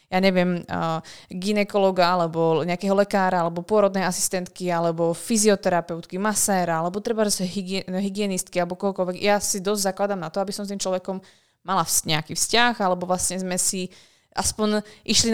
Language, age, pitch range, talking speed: Slovak, 20-39, 180-200 Hz, 150 wpm